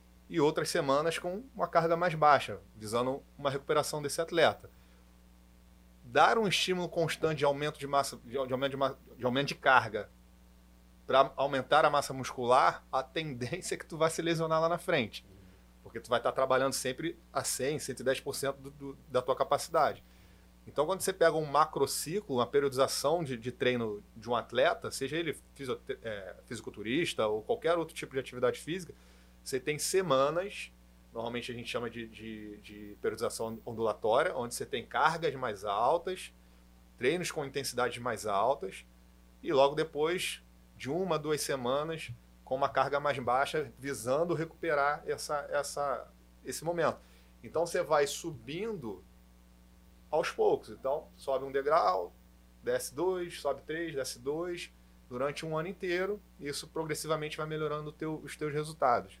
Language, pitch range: Portuguese, 105-160 Hz